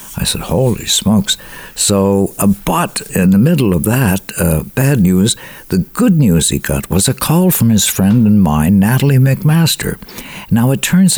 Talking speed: 175 wpm